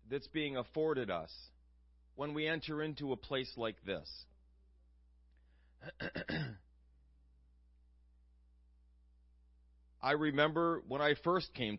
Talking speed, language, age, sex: 90 wpm, English, 40-59, male